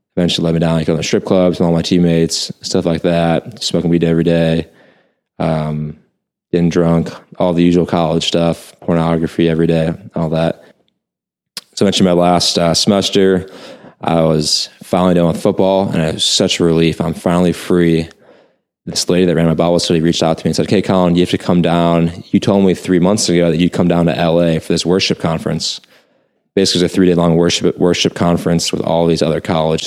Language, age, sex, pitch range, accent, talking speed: English, 20-39, male, 80-90 Hz, American, 210 wpm